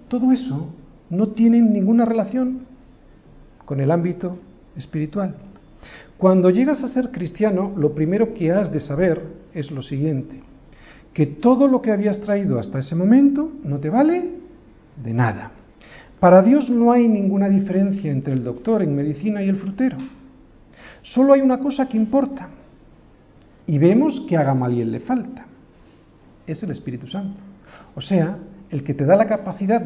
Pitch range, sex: 150-220 Hz, male